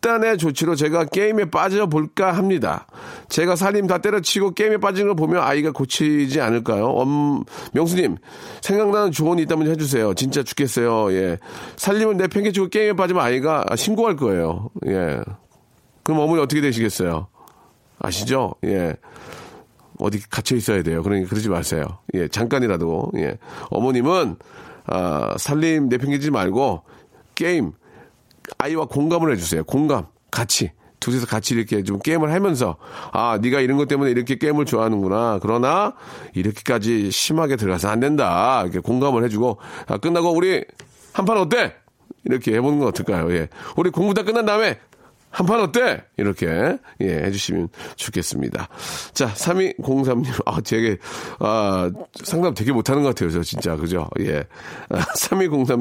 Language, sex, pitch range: Korean, male, 110-175 Hz